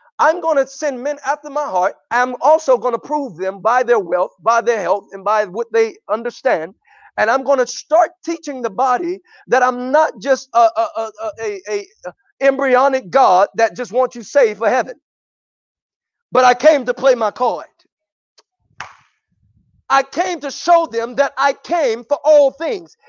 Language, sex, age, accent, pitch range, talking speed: English, male, 40-59, American, 220-295 Hz, 170 wpm